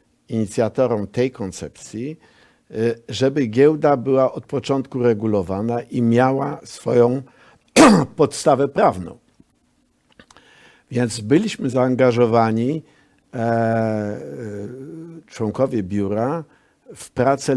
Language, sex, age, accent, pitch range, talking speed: Polish, male, 60-79, native, 100-140 Hz, 70 wpm